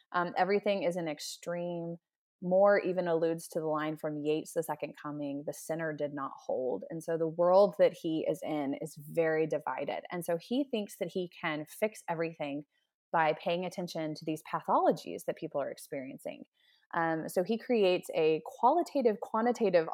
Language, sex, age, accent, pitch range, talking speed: English, female, 20-39, American, 155-190 Hz, 175 wpm